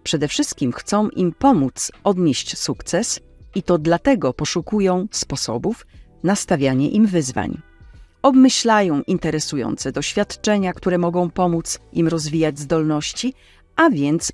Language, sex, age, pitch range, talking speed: Polish, female, 40-59, 140-195 Hz, 115 wpm